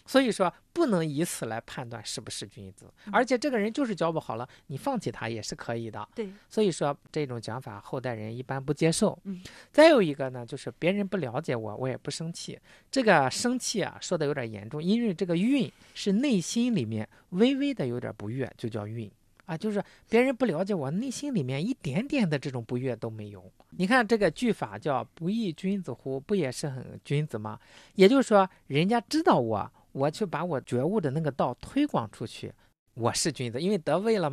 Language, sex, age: Chinese, male, 50-69